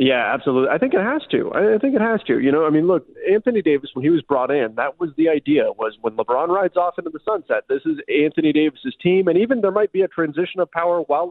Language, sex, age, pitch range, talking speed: English, male, 40-59, 135-175 Hz, 270 wpm